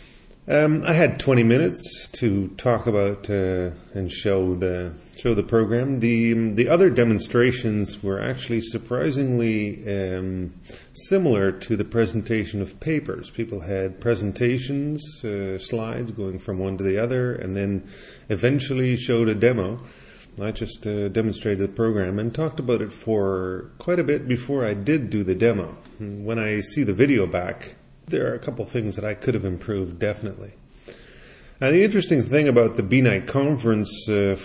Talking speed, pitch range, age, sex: 160 wpm, 105-130 Hz, 30-49, male